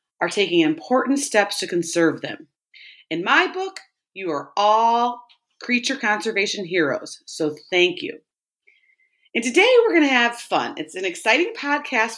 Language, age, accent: English, 30-49, American